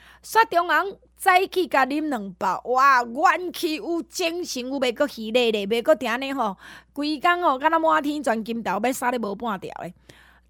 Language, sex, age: Chinese, female, 20-39